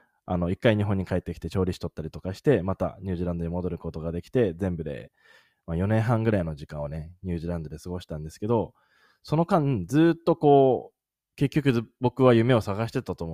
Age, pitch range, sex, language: 20-39, 85-130 Hz, male, Japanese